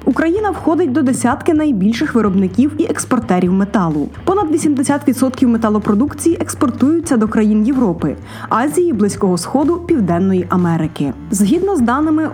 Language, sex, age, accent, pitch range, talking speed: Ukrainian, female, 20-39, native, 210-295 Hz, 115 wpm